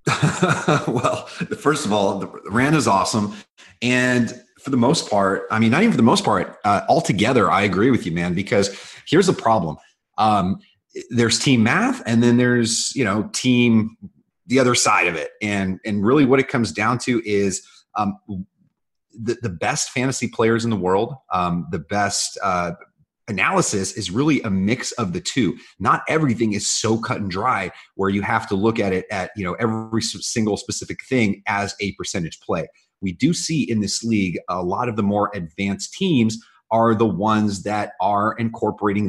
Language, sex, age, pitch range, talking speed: English, male, 30-49, 100-120 Hz, 185 wpm